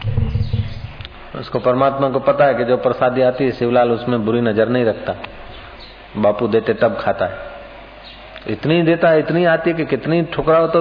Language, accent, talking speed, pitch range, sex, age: Hindi, native, 170 wpm, 120-170 Hz, male, 50-69